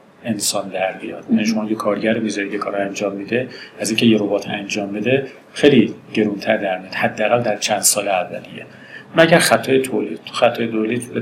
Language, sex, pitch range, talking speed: Persian, male, 105-125 Hz, 165 wpm